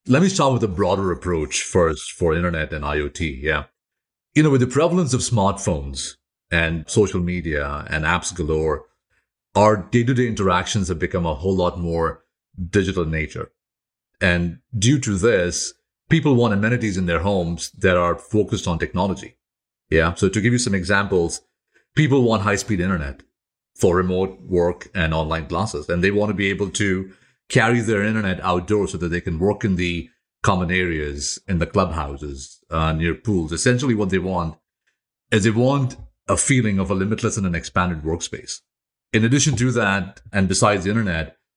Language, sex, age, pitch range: English, male, 40-59, 85-110 Hz